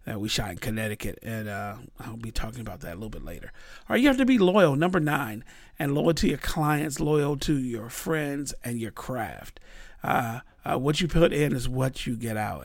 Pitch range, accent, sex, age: 120-150 Hz, American, male, 40-59